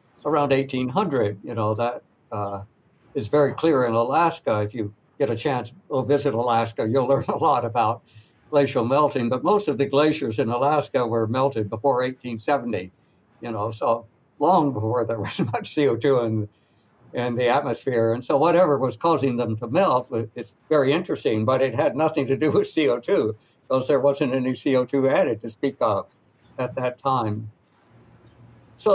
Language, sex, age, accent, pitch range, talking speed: English, male, 60-79, American, 115-140 Hz, 170 wpm